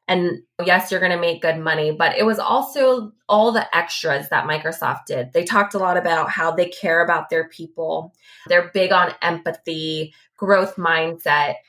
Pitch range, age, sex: 155-185 Hz, 20-39, female